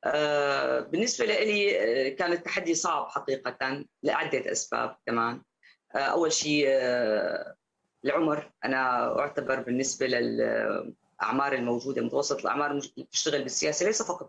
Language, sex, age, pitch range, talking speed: Arabic, female, 20-39, 130-160 Hz, 90 wpm